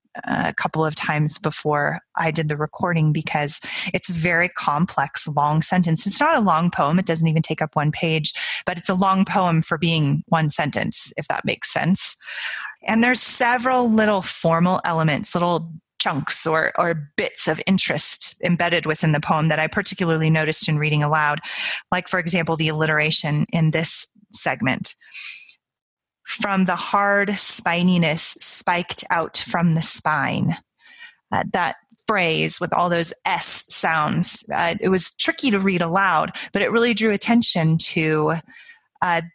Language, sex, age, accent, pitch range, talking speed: English, female, 30-49, American, 160-200 Hz, 155 wpm